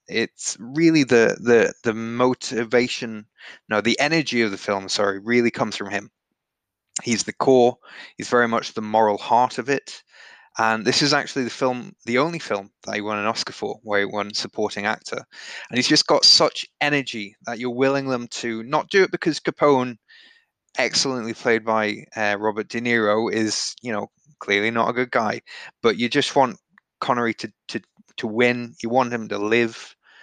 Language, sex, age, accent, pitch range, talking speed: English, male, 20-39, British, 110-130 Hz, 185 wpm